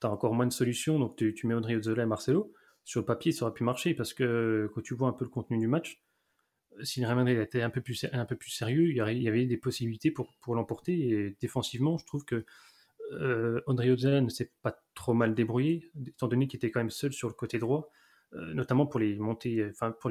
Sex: male